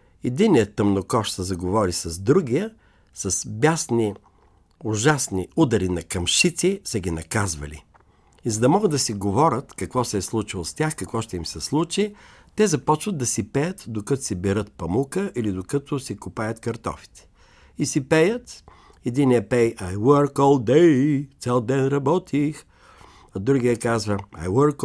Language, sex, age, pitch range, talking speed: Bulgarian, male, 50-69, 95-145 Hz, 155 wpm